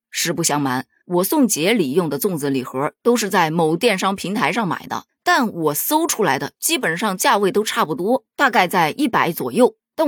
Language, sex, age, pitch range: Chinese, female, 20-39, 175-250 Hz